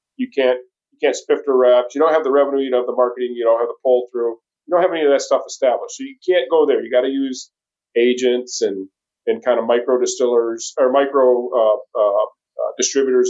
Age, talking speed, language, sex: 40-59, 240 wpm, English, male